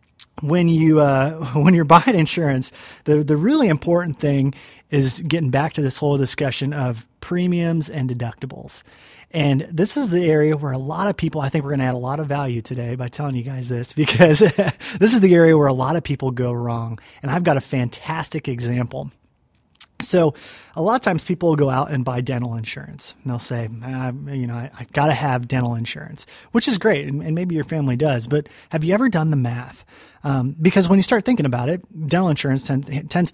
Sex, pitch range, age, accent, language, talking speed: male, 125-155 Hz, 30-49, American, English, 215 wpm